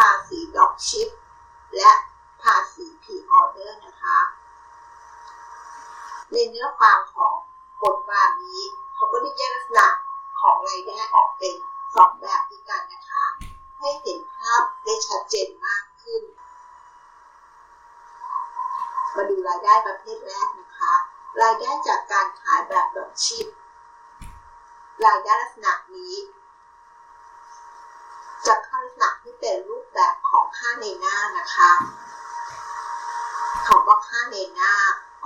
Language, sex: Thai, female